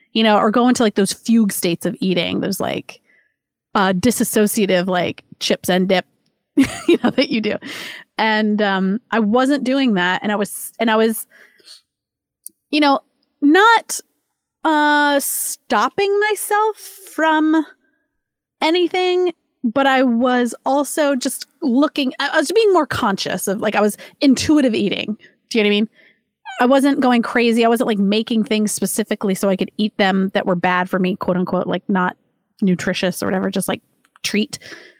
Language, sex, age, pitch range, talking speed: English, female, 30-49, 210-300 Hz, 165 wpm